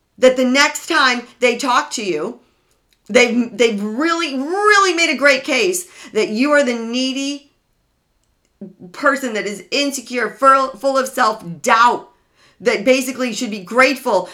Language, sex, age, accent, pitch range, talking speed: English, female, 40-59, American, 215-280 Hz, 140 wpm